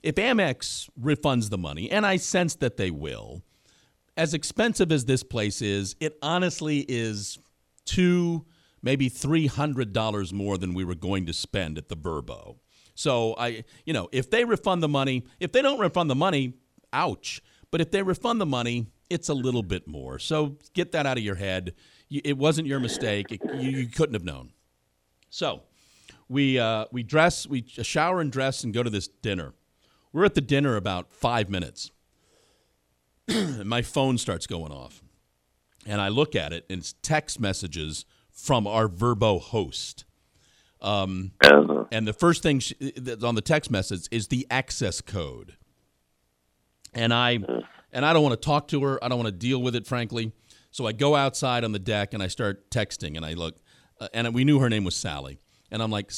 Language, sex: English, male